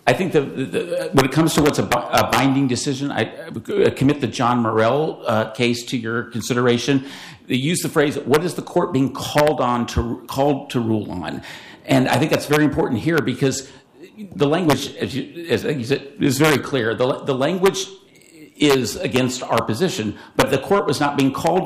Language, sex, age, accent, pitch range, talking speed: English, male, 50-69, American, 120-145 Hz, 195 wpm